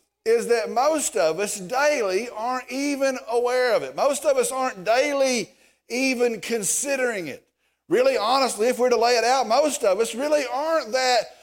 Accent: American